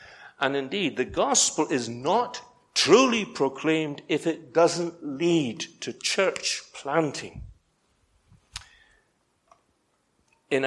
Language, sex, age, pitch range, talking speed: English, male, 60-79, 130-185 Hz, 90 wpm